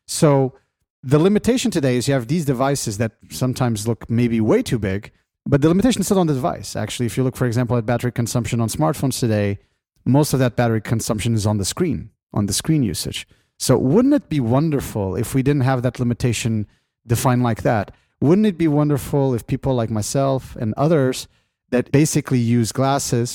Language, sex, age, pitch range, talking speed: English, male, 30-49, 110-140 Hz, 200 wpm